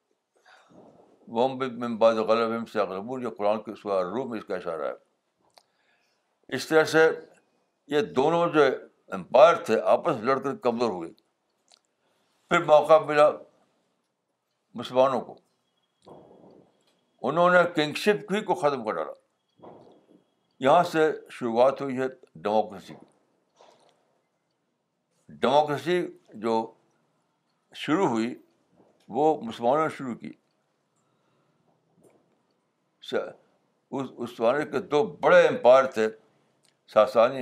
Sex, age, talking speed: male, 60-79, 95 wpm